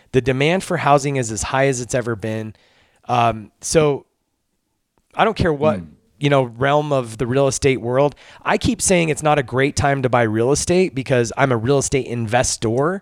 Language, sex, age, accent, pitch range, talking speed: English, male, 30-49, American, 115-145 Hz, 200 wpm